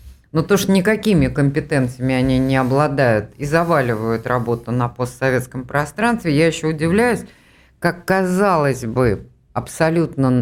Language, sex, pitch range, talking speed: Russian, female, 120-175 Hz, 120 wpm